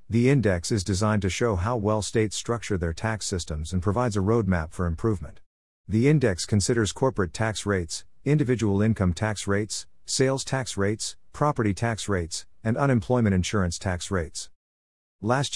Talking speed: 160 wpm